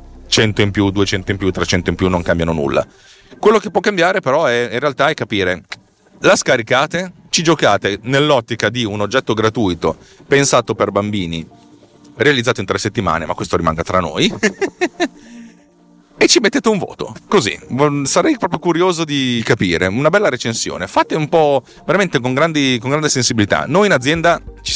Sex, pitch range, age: male, 95-150 Hz, 30-49